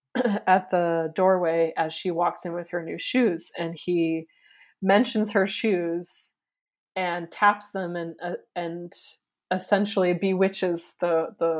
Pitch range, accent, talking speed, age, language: 165-195 Hz, American, 135 wpm, 20-39, English